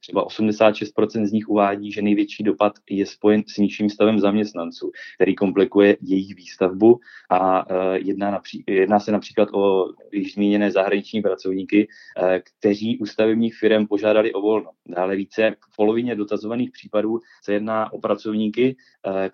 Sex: male